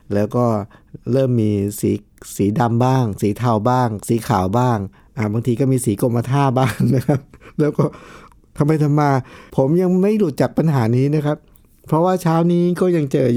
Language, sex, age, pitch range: Thai, male, 60-79, 105-145 Hz